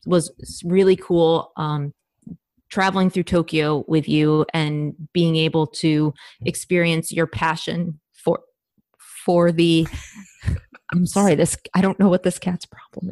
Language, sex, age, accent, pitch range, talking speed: English, female, 20-39, American, 155-175 Hz, 135 wpm